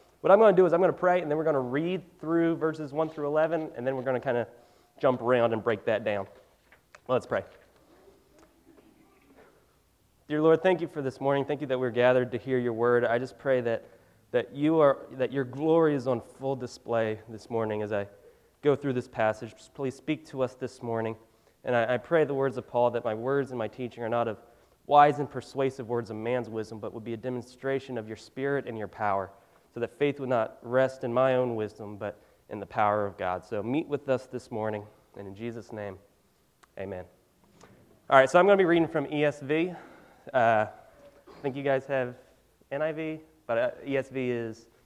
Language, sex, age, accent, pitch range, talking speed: English, male, 20-39, American, 115-155 Hz, 220 wpm